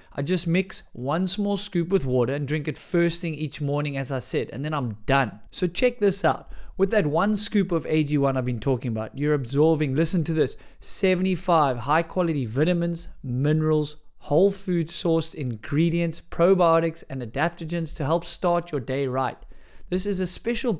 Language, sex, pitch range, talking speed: English, male, 145-180 Hz, 180 wpm